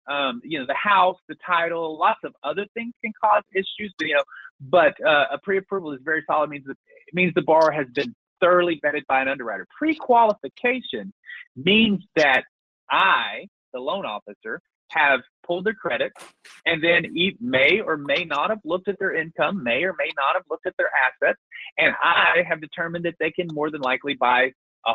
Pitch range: 150-200 Hz